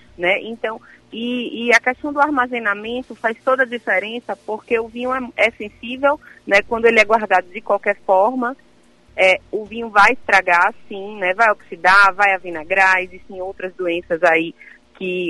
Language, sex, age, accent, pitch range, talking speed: Portuguese, female, 30-49, Brazilian, 180-225 Hz, 165 wpm